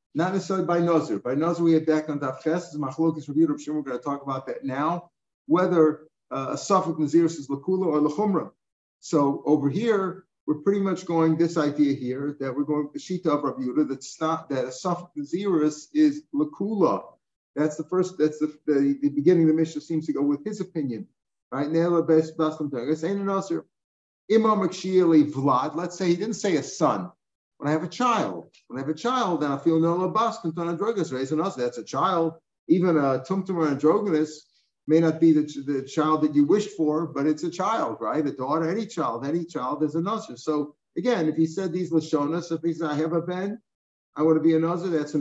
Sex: male